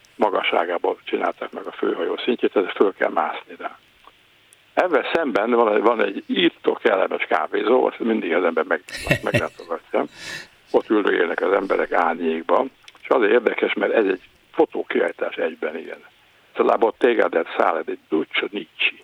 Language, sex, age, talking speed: Hungarian, male, 60-79, 140 wpm